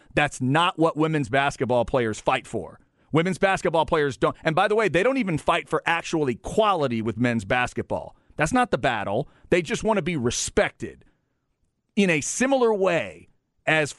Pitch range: 135-170 Hz